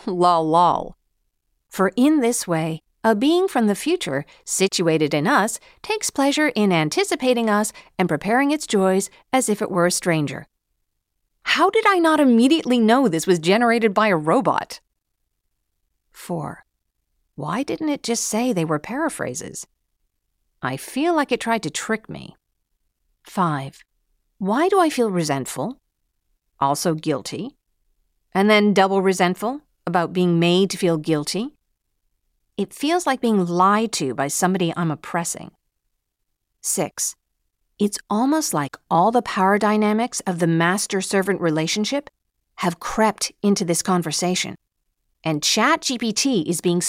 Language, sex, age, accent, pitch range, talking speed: English, female, 50-69, American, 165-240 Hz, 135 wpm